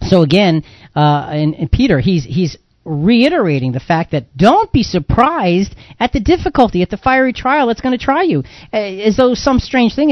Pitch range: 135-210 Hz